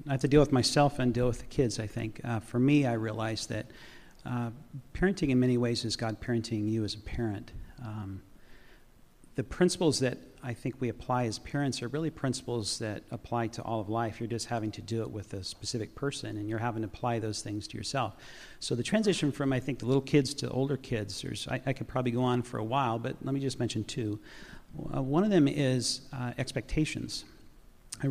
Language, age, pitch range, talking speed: English, 40-59, 115-140 Hz, 225 wpm